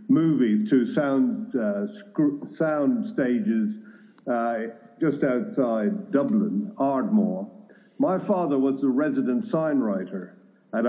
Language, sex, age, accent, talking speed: English, male, 50-69, Irish, 110 wpm